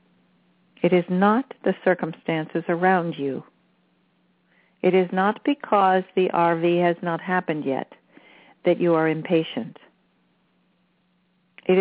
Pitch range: 170-205 Hz